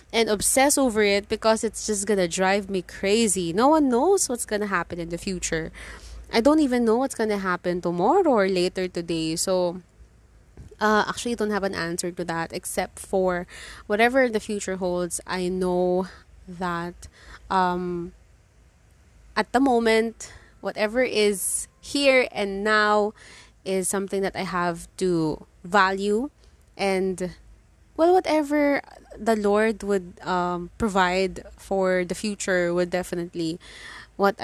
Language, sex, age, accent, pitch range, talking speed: English, female, 20-39, Filipino, 180-235 Hz, 140 wpm